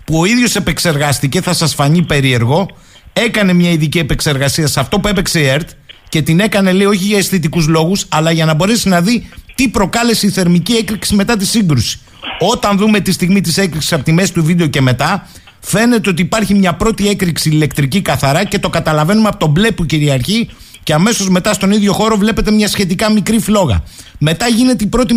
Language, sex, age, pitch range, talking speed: Greek, male, 50-69, 155-210 Hz, 200 wpm